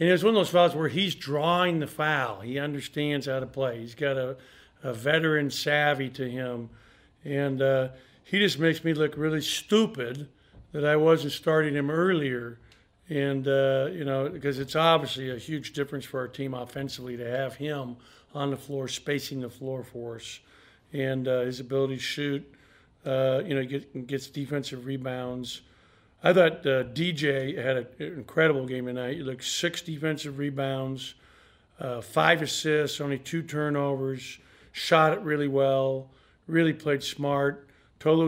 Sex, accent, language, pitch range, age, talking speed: male, American, English, 130-150 Hz, 50-69, 165 wpm